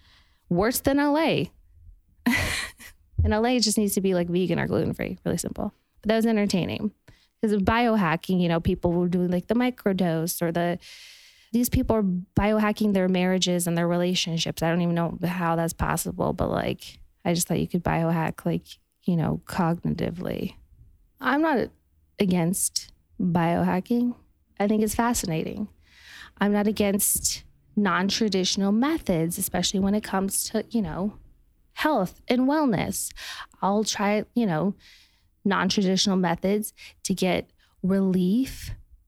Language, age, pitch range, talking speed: English, 20-39, 170-210 Hz, 140 wpm